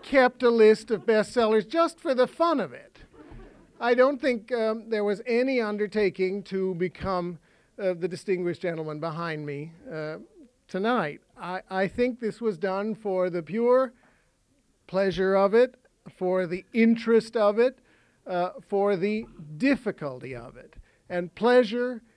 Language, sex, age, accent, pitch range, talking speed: English, male, 50-69, American, 165-215 Hz, 145 wpm